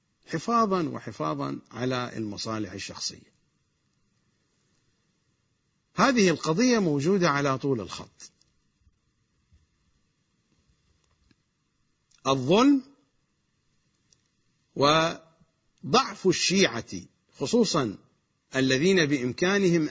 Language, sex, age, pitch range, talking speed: English, male, 50-69, 130-195 Hz, 50 wpm